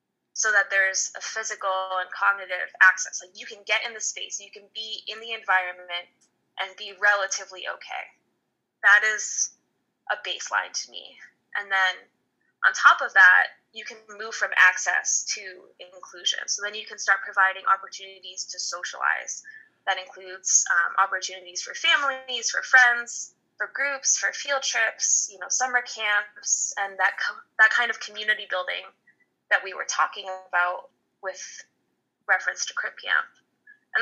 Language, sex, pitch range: English, female, 190-245 Hz